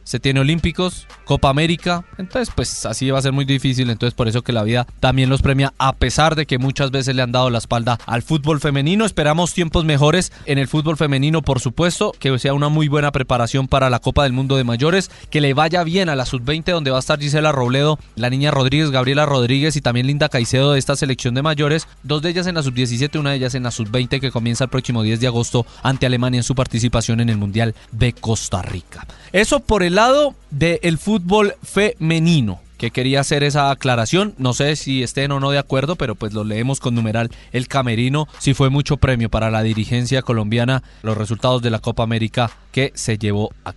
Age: 20-39